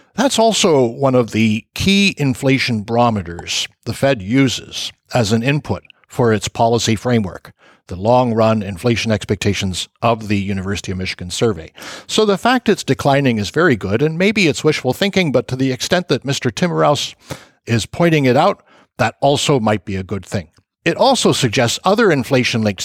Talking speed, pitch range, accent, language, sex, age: 170 wpm, 105-135 Hz, American, English, male, 60-79